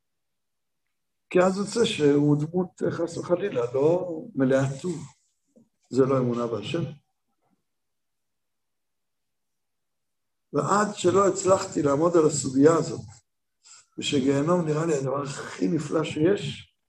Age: 60-79